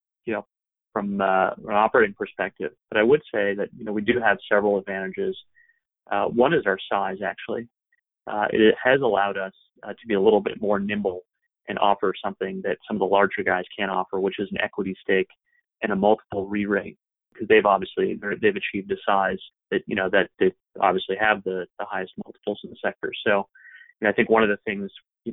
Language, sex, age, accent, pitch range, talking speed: English, male, 30-49, American, 95-120 Hz, 210 wpm